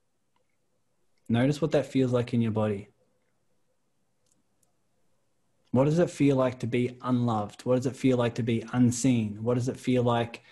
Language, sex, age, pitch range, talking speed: English, male, 20-39, 115-135 Hz, 165 wpm